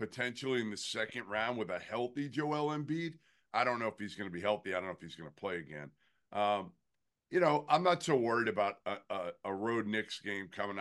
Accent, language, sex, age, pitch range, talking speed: American, English, male, 50-69, 110-145 Hz, 240 wpm